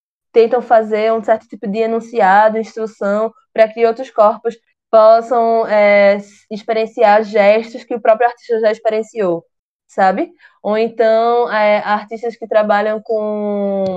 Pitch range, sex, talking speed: 210-255 Hz, female, 130 wpm